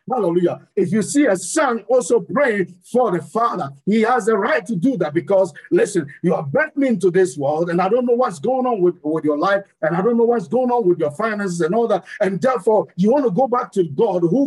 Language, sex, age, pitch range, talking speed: English, male, 50-69, 175-250 Hz, 250 wpm